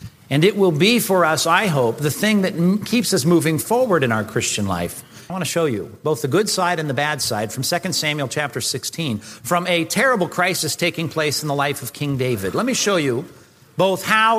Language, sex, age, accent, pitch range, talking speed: English, male, 50-69, American, 140-185 Hz, 235 wpm